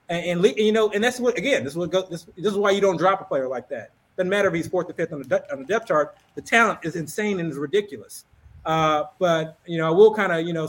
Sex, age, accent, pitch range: male, 30-49, American, 145-185 Hz